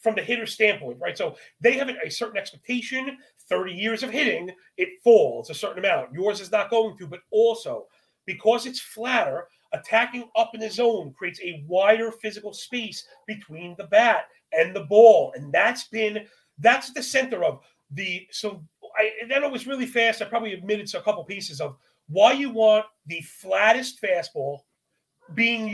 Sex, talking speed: male, 175 wpm